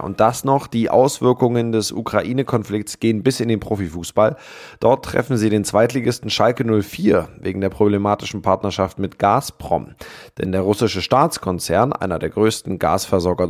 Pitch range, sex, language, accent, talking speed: 95-115 Hz, male, German, German, 145 wpm